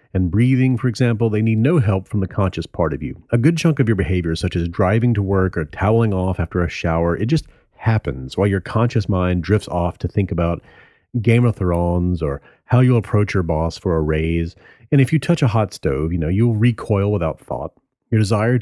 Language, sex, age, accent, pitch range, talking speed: English, male, 40-59, American, 95-125 Hz, 225 wpm